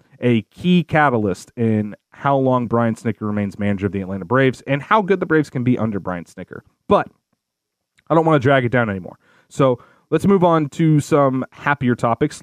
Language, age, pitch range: English, 30-49, 115-145 Hz